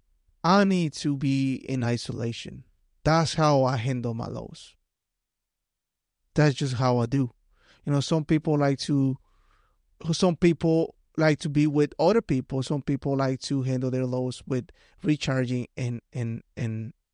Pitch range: 115-145 Hz